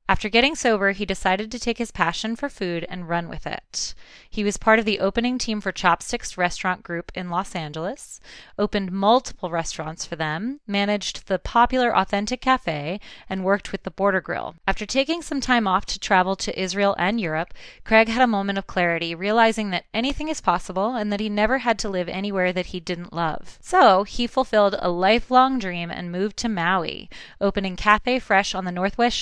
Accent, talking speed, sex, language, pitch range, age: American, 195 wpm, female, English, 175-220 Hz, 20-39